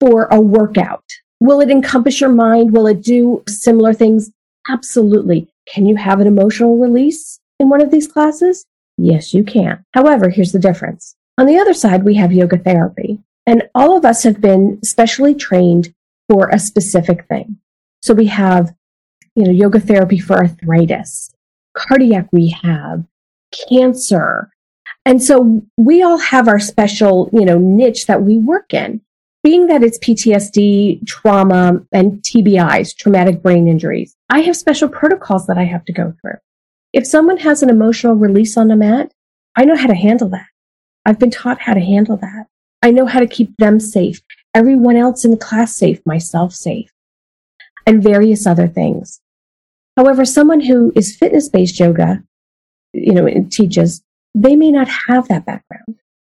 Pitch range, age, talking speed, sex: 190-250 Hz, 40-59, 165 wpm, female